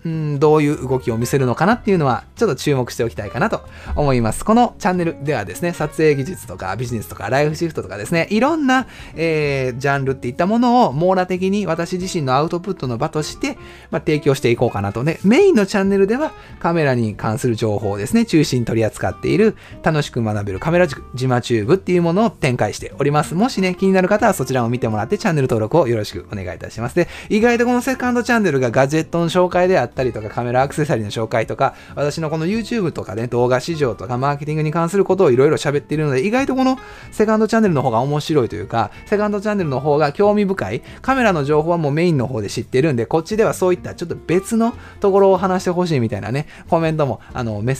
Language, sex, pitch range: Japanese, male, 120-185 Hz